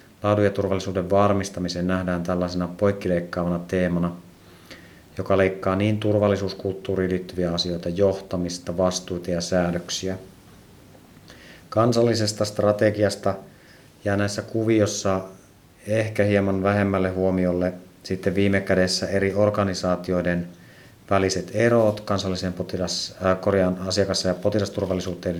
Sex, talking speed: male, 90 wpm